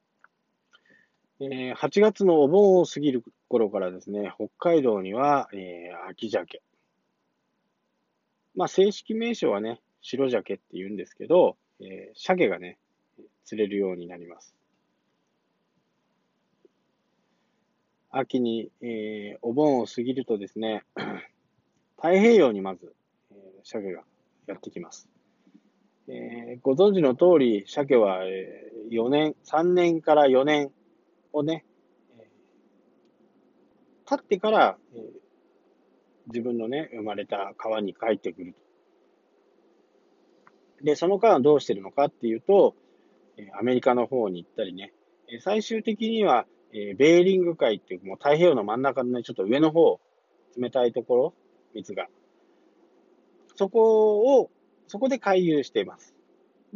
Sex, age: male, 20-39